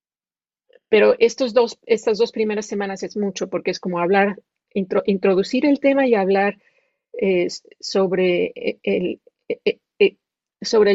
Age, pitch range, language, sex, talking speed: 40-59, 205-280 Hz, English, female, 105 wpm